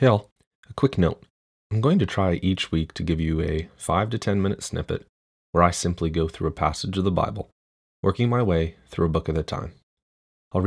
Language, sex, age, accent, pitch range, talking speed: English, male, 30-49, American, 80-105 Hz, 220 wpm